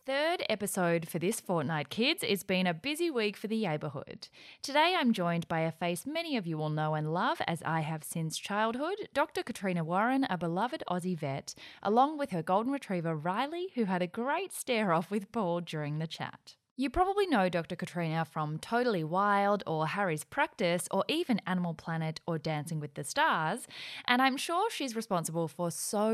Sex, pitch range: female, 160-240 Hz